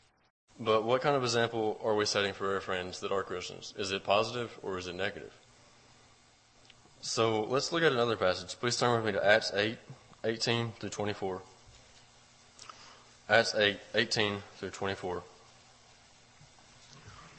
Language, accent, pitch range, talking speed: English, American, 100-115 Hz, 130 wpm